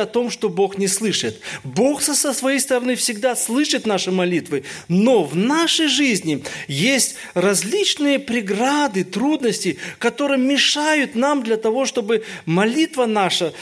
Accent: native